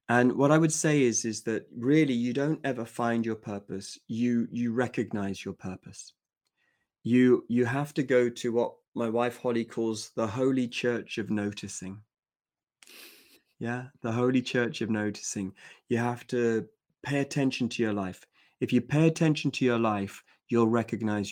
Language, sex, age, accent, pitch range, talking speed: English, male, 30-49, British, 110-135 Hz, 165 wpm